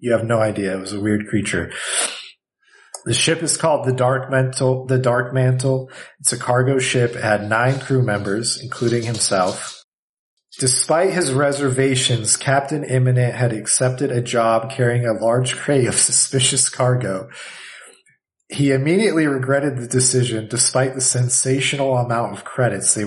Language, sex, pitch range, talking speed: English, male, 110-130 Hz, 150 wpm